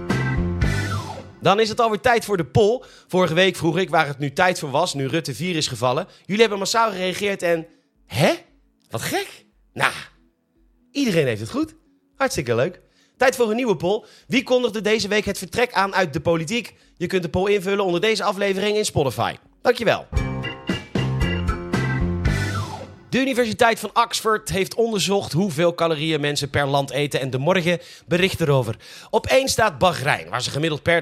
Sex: male